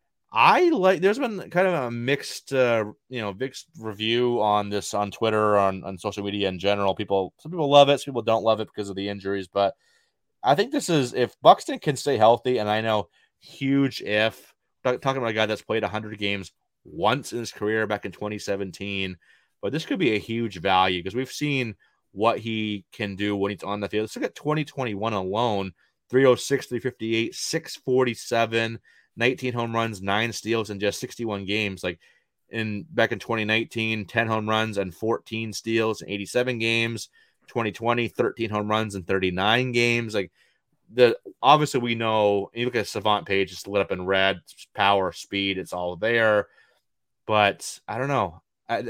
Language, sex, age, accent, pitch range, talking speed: English, male, 30-49, American, 100-125 Hz, 185 wpm